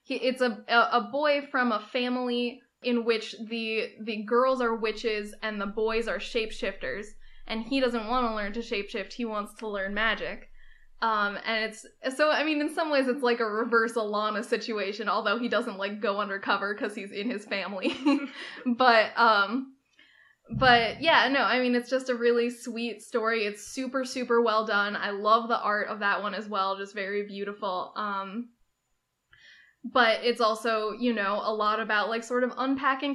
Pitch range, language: 215-250 Hz, English